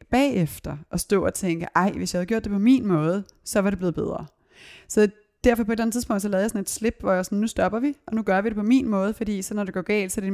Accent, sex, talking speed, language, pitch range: native, female, 320 wpm, Danish, 170-200 Hz